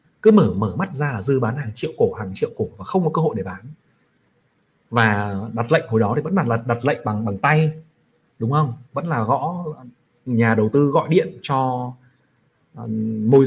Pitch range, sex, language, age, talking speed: 115-155 Hz, male, Vietnamese, 30-49, 205 wpm